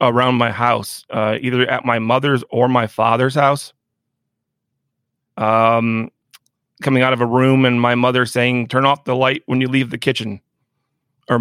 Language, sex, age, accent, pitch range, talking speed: English, male, 30-49, American, 120-135 Hz, 170 wpm